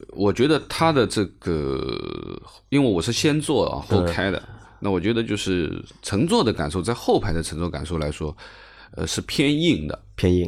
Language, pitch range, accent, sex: Chinese, 85-105 Hz, native, male